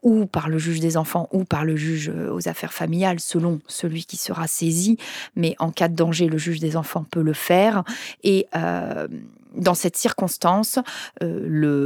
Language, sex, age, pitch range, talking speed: French, female, 40-59, 170-235 Hz, 185 wpm